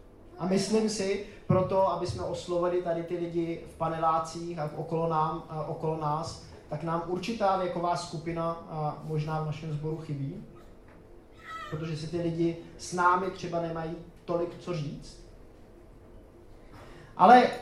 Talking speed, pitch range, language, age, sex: 140 wpm, 160-185 Hz, Czech, 20-39, male